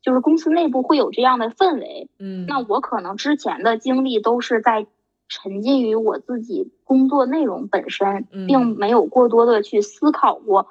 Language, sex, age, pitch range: Chinese, female, 20-39, 205-265 Hz